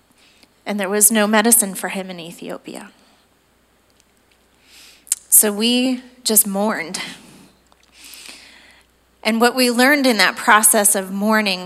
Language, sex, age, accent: English, female, 30-49, American